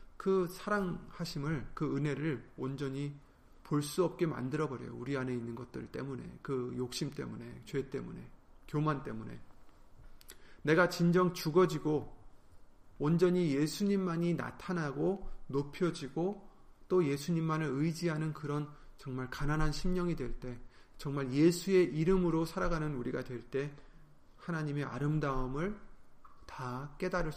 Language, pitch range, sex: Korean, 130-170 Hz, male